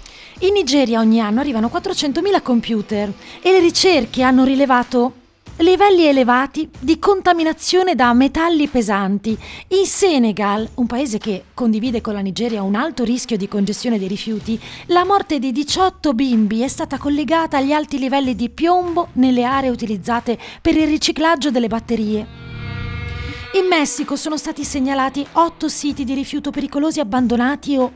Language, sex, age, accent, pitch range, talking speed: Italian, female, 30-49, native, 240-315 Hz, 145 wpm